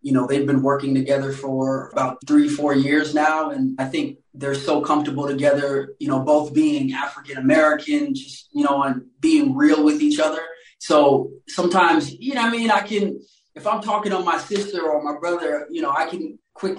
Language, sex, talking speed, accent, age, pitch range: English, male, 200 wpm, American, 20-39, 140-195 Hz